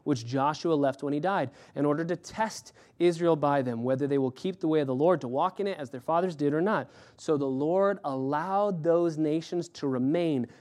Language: English